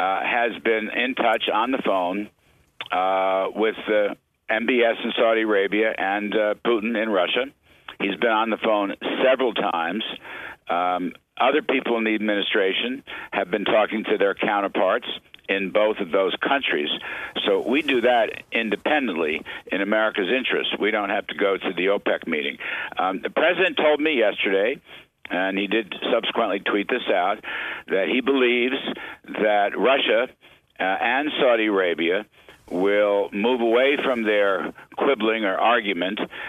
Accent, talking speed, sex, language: American, 150 wpm, male, English